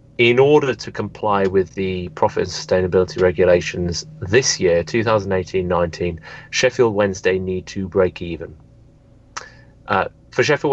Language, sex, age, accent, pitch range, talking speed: English, male, 30-49, British, 85-100 Hz, 125 wpm